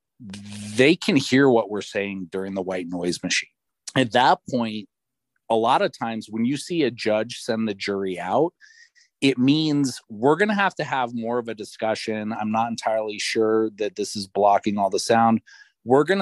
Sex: male